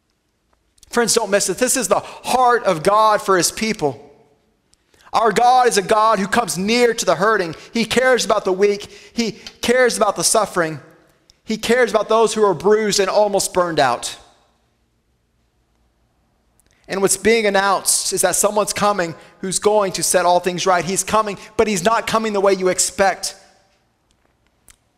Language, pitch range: English, 170-210 Hz